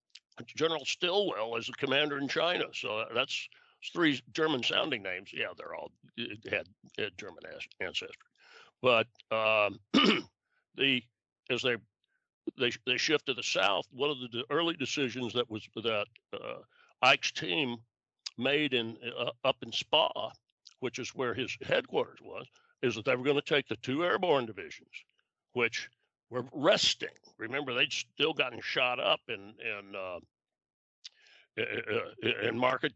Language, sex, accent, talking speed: English, male, American, 145 wpm